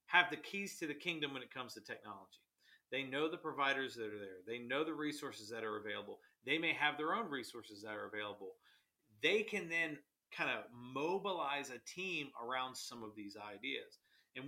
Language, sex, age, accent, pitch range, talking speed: English, male, 40-59, American, 110-150 Hz, 200 wpm